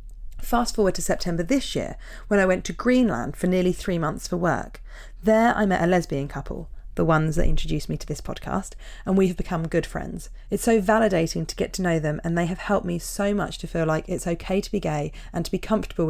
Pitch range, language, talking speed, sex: 160-200 Hz, English, 240 wpm, female